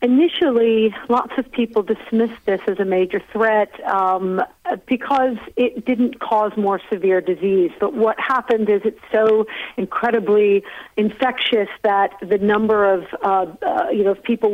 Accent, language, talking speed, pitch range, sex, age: American, English, 145 wpm, 195-235 Hz, female, 50-69